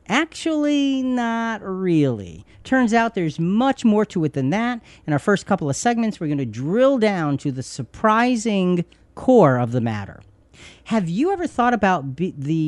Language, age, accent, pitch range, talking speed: English, 40-59, American, 125-210 Hz, 170 wpm